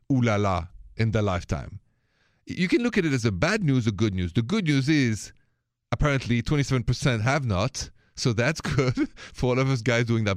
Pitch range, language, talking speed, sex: 100-130 Hz, English, 195 wpm, male